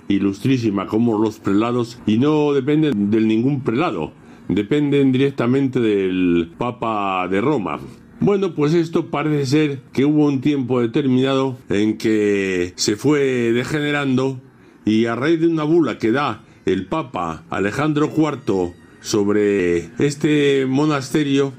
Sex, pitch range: male, 105-140 Hz